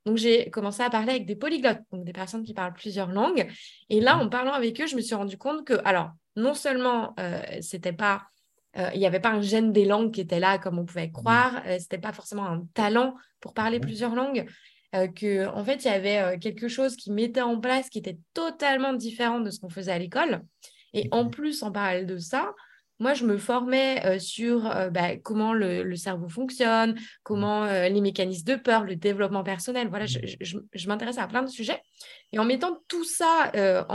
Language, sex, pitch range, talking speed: French, female, 195-245 Hz, 220 wpm